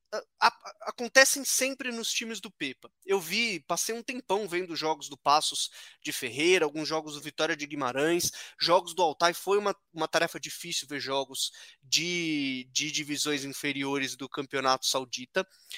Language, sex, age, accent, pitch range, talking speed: Portuguese, male, 20-39, Brazilian, 155-200 Hz, 160 wpm